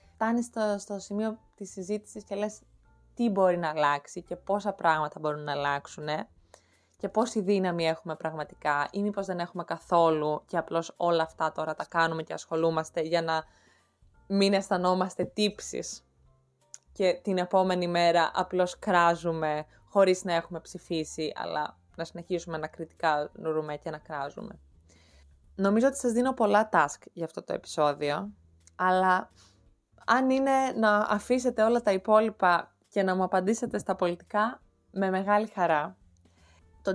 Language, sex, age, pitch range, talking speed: Greek, female, 20-39, 155-205 Hz, 145 wpm